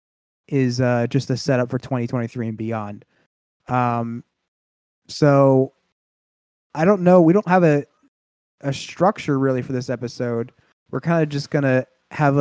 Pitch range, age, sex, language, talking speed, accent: 125-155 Hz, 20-39, male, English, 150 wpm, American